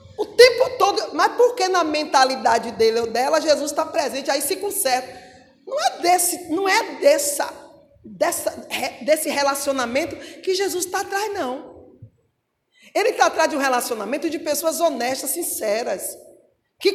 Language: Portuguese